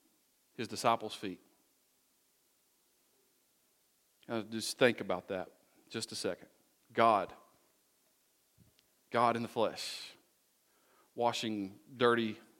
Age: 40-59